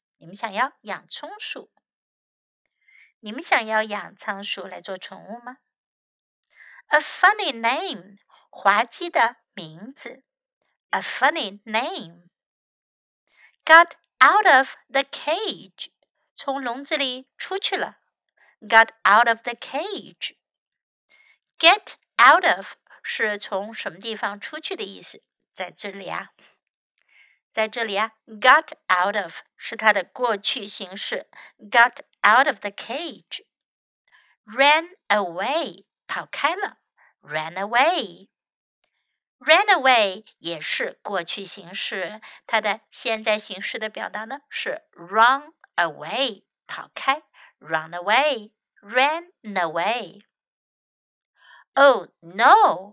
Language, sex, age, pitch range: Chinese, female, 60-79, 205-305 Hz